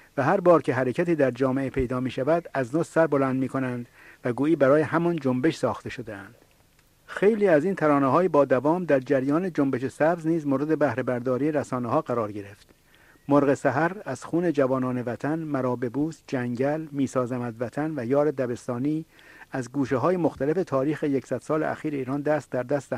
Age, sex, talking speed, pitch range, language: 50-69, male, 175 wpm, 130-160 Hz, English